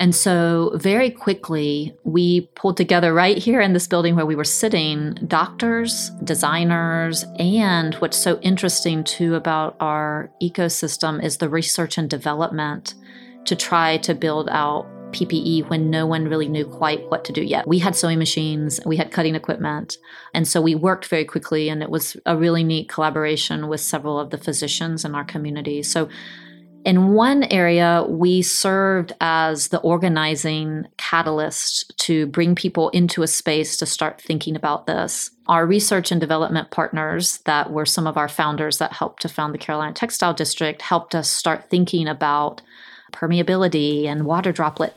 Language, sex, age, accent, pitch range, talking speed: English, female, 30-49, American, 155-180 Hz, 165 wpm